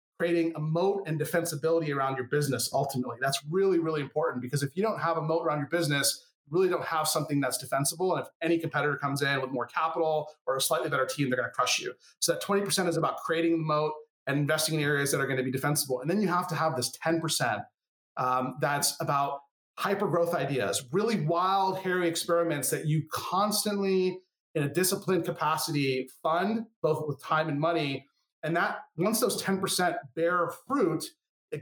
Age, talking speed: 30-49, 195 wpm